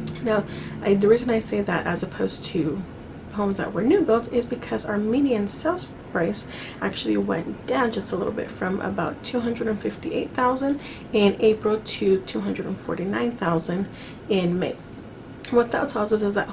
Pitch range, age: 190-245 Hz, 30-49